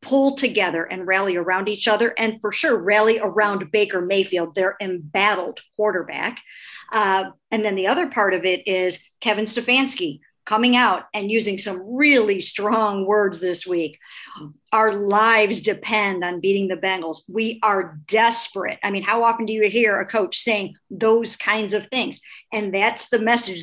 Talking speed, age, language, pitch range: 170 wpm, 50-69, English, 195-235 Hz